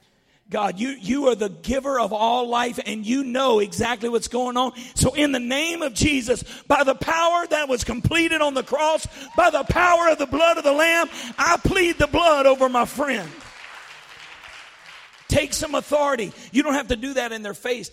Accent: American